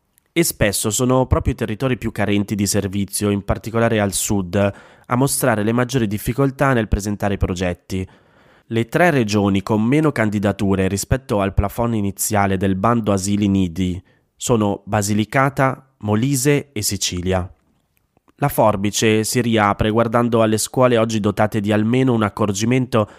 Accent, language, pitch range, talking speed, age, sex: native, Italian, 100-125 Hz, 140 wpm, 20-39, male